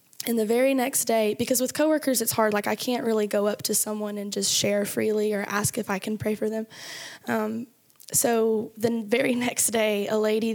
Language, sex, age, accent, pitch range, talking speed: English, female, 10-29, American, 210-230 Hz, 215 wpm